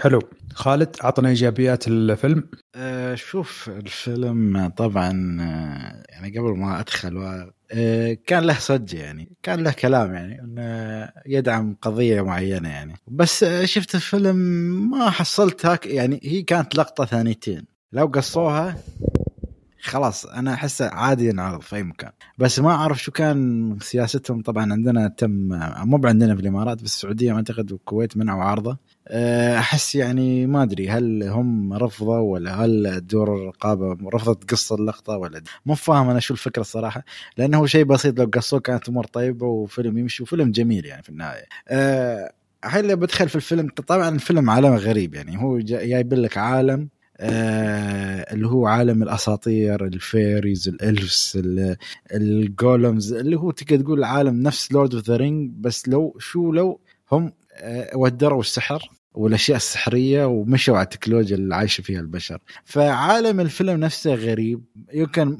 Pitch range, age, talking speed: 105-140 Hz, 20-39, 140 wpm